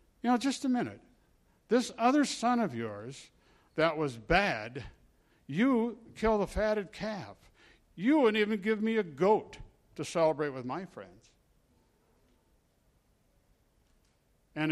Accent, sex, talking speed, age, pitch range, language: American, male, 125 wpm, 60-79, 120-170 Hz, English